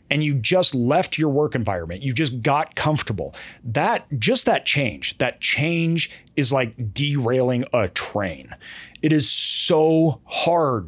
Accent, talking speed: American, 145 wpm